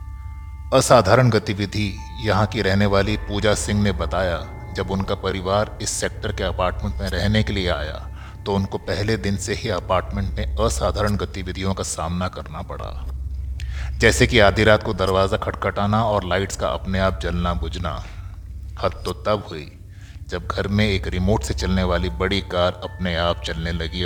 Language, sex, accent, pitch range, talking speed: Hindi, male, native, 85-105 Hz, 170 wpm